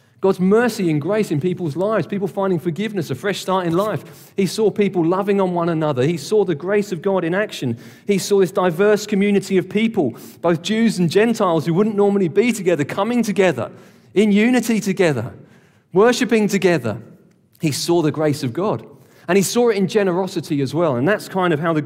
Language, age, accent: English, 40-59, British